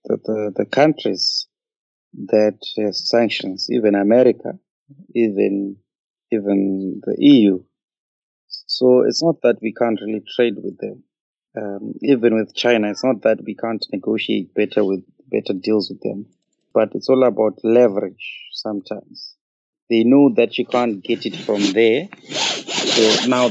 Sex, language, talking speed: male, English, 140 wpm